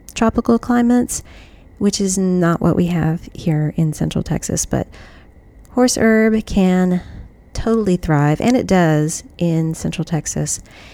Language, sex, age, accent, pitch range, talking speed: English, female, 30-49, American, 155-195 Hz, 130 wpm